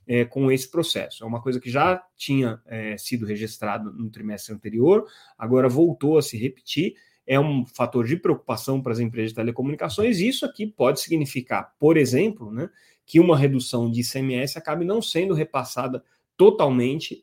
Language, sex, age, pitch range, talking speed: Portuguese, male, 30-49, 115-140 Hz, 165 wpm